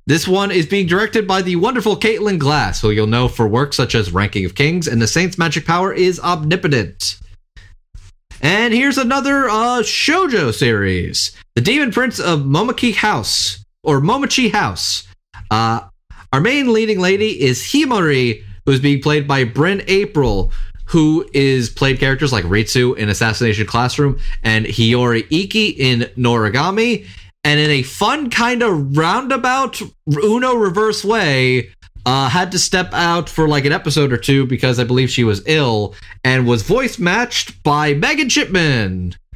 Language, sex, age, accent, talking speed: English, male, 30-49, American, 160 wpm